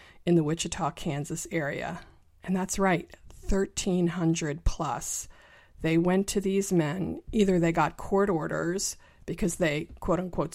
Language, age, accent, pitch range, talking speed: English, 40-59, American, 155-190 Hz, 135 wpm